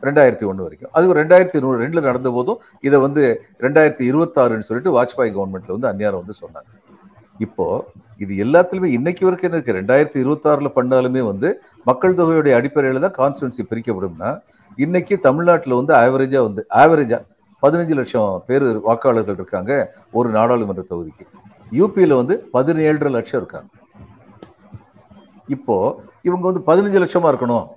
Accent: native